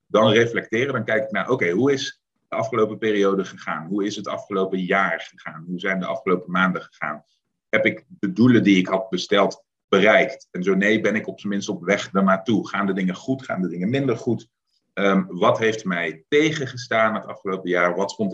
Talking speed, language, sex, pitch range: 215 wpm, Dutch, male, 90-105 Hz